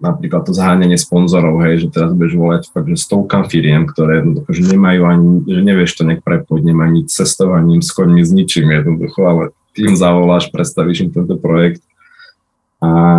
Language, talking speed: Slovak, 170 wpm